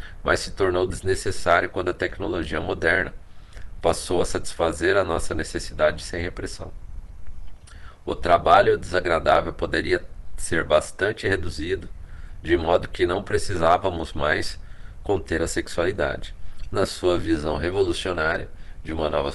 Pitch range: 80-95 Hz